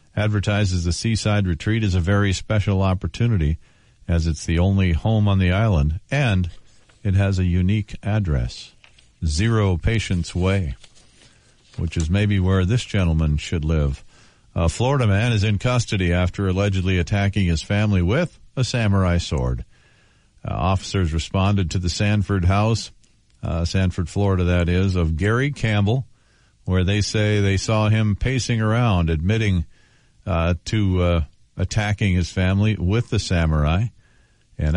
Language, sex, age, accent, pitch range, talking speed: English, male, 50-69, American, 85-105 Hz, 145 wpm